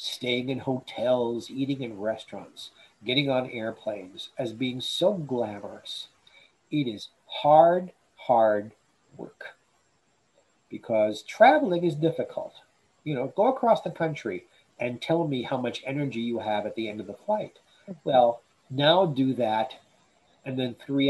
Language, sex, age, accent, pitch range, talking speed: English, male, 50-69, American, 120-170 Hz, 140 wpm